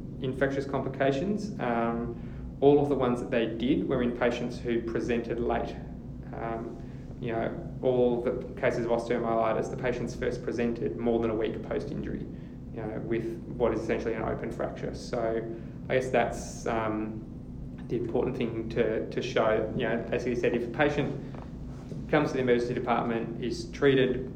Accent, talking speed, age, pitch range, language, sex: Australian, 170 wpm, 20-39, 115-135 Hz, English, male